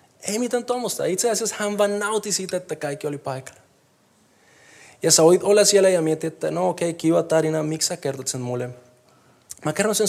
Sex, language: male, Finnish